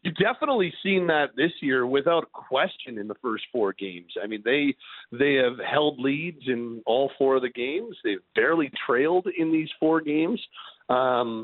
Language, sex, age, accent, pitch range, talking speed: English, male, 50-69, American, 130-165 Hz, 180 wpm